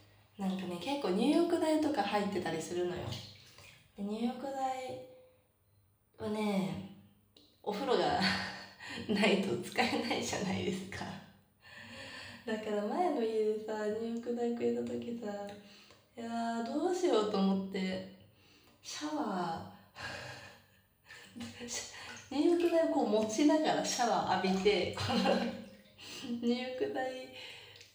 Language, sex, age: Japanese, female, 20-39